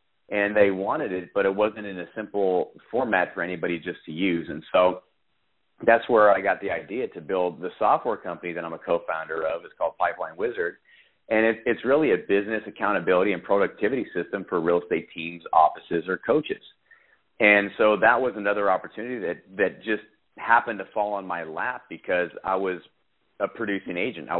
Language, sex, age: English, male, 40-59